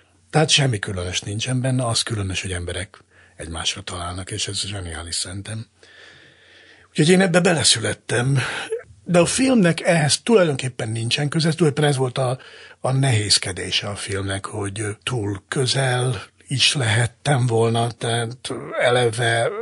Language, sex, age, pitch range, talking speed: Hungarian, male, 60-79, 100-135 Hz, 135 wpm